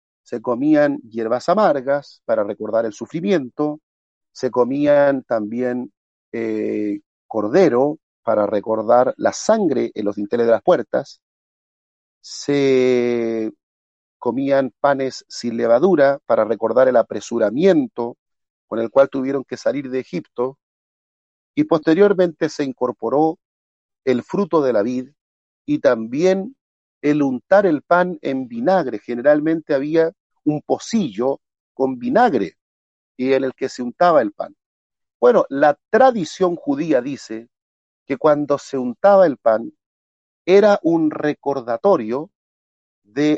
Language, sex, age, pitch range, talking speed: Spanish, male, 40-59, 120-175 Hz, 120 wpm